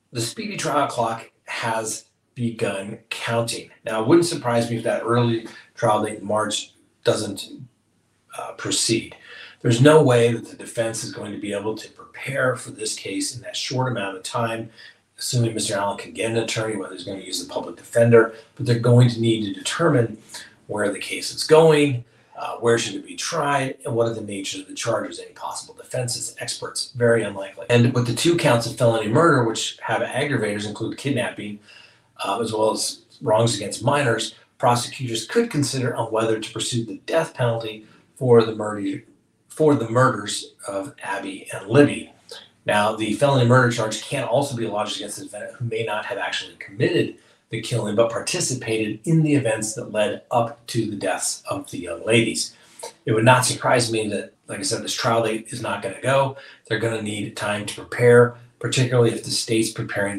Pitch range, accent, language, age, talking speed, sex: 110-125 Hz, American, English, 40-59, 195 wpm, male